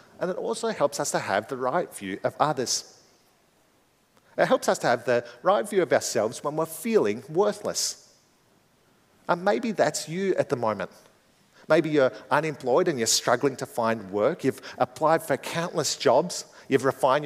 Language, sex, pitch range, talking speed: English, male, 125-185 Hz, 170 wpm